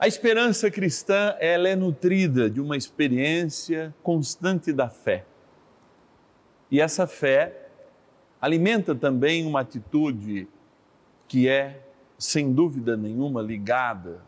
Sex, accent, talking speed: male, Brazilian, 105 wpm